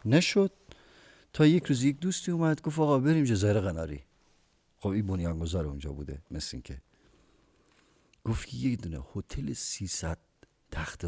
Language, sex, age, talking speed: Persian, male, 50-69, 135 wpm